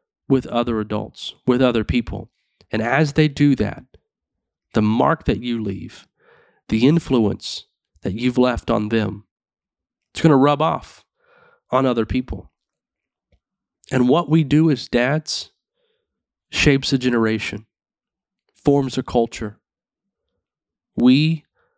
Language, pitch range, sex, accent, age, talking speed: English, 110-145 Hz, male, American, 30-49, 120 wpm